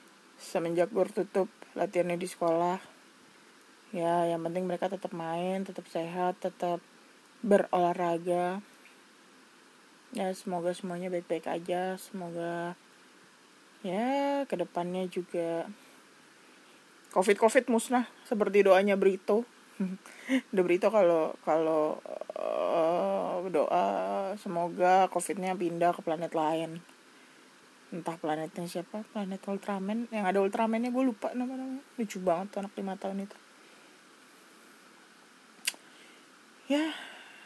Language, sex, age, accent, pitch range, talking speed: Indonesian, female, 20-39, native, 175-215 Hz, 100 wpm